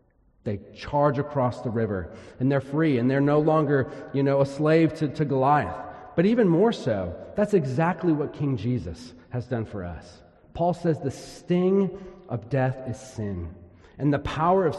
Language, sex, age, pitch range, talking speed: English, male, 40-59, 110-150 Hz, 180 wpm